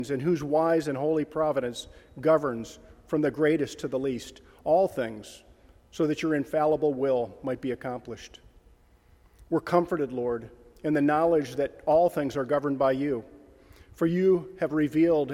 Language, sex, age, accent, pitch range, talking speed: English, male, 40-59, American, 130-155 Hz, 155 wpm